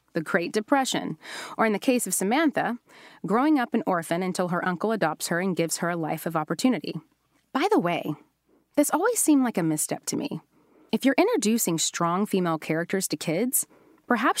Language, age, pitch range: English, 30-49, 170-235 Hz